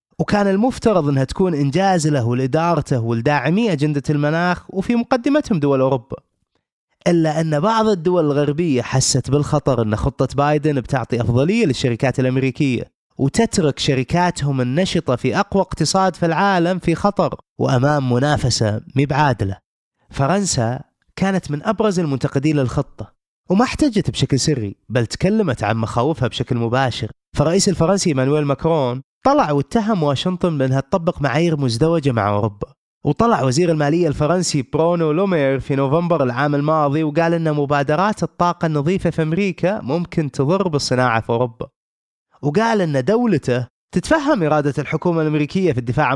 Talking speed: 135 wpm